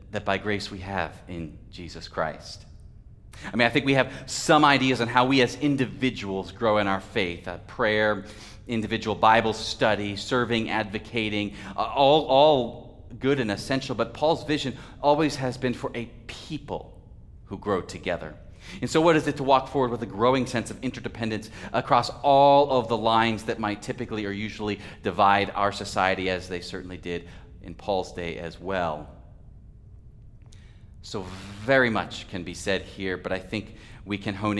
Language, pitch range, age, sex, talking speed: English, 95-115 Hz, 30-49, male, 170 wpm